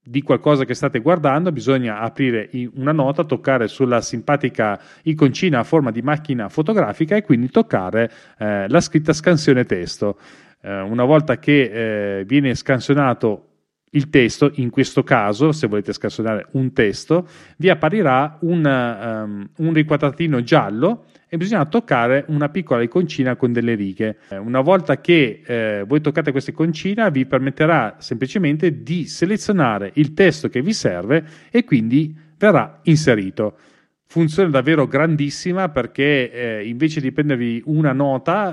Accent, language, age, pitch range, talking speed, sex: native, Italian, 30-49, 125-155 Hz, 140 wpm, male